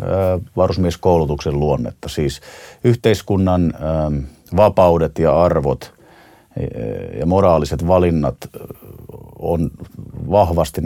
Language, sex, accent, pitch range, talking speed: Finnish, male, native, 75-90 Hz, 65 wpm